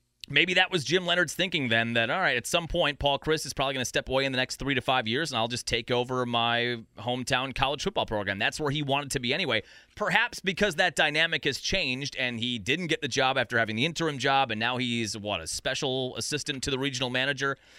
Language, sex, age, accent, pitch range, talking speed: English, male, 30-49, American, 125-160 Hz, 245 wpm